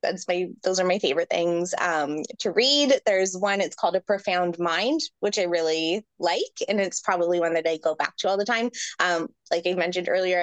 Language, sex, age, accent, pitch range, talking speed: English, female, 20-39, American, 180-235 Hz, 220 wpm